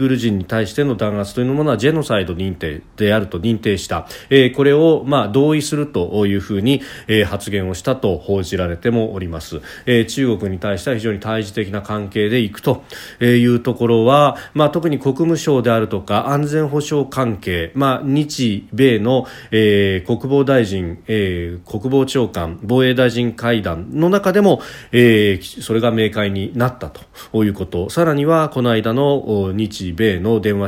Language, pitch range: Japanese, 100-130 Hz